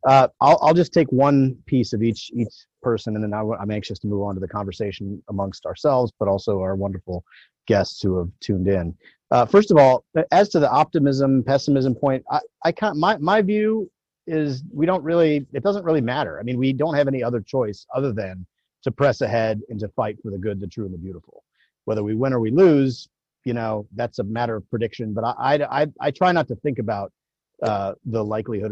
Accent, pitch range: American, 105-140 Hz